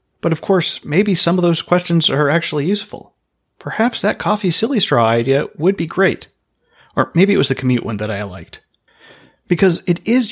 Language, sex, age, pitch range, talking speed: English, male, 30-49, 125-180 Hz, 190 wpm